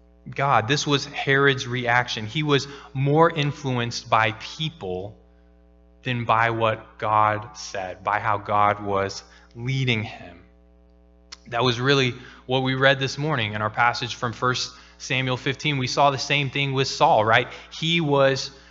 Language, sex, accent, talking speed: English, male, American, 150 wpm